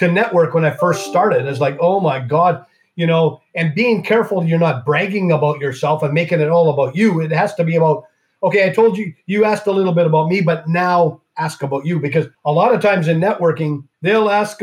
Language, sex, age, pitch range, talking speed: English, male, 40-59, 160-205 Hz, 235 wpm